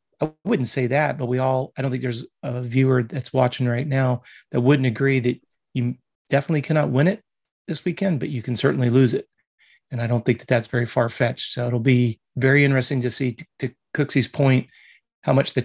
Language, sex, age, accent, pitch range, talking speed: English, male, 30-49, American, 125-135 Hz, 210 wpm